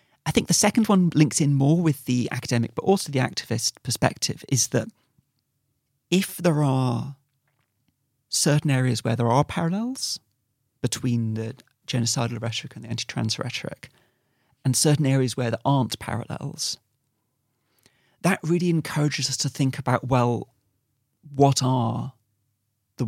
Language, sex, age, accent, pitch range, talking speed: English, male, 40-59, British, 120-140 Hz, 140 wpm